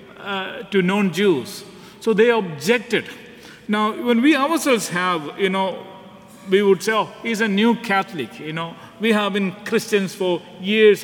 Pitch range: 170-215 Hz